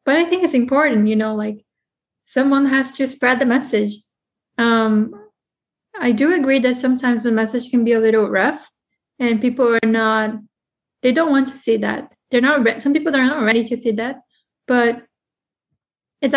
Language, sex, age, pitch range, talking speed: English, female, 20-39, 220-260 Hz, 180 wpm